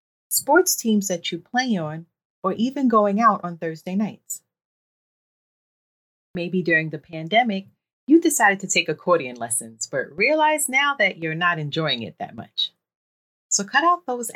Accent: American